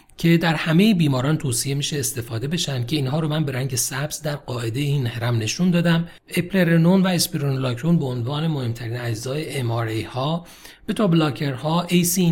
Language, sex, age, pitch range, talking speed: Persian, male, 40-59, 125-170 Hz, 160 wpm